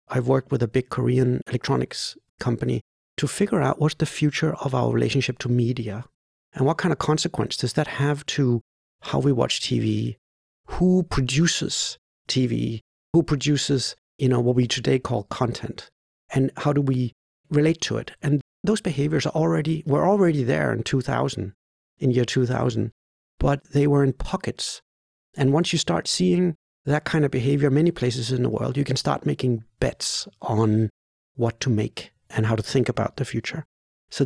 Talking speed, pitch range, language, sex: 175 wpm, 120-150 Hz, English, male